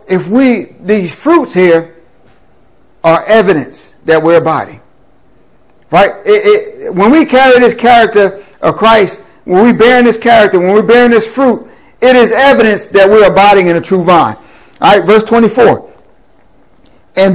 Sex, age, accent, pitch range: male, 50-69, American, 195-250 Hz